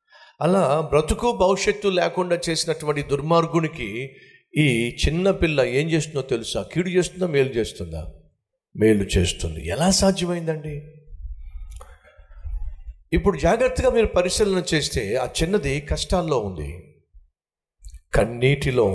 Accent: native